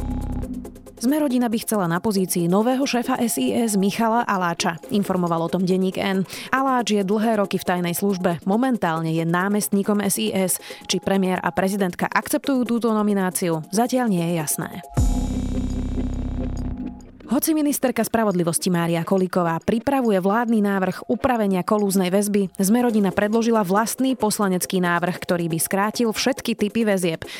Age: 30-49